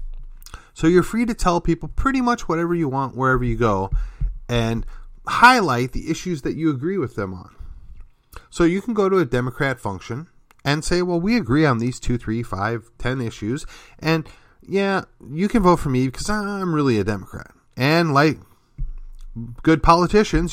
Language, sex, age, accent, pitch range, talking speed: English, male, 30-49, American, 115-165 Hz, 175 wpm